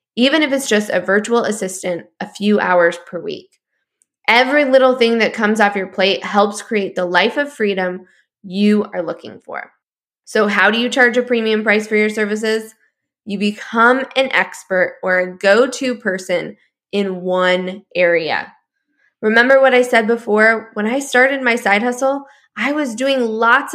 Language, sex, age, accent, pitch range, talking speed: English, female, 10-29, American, 200-250 Hz, 170 wpm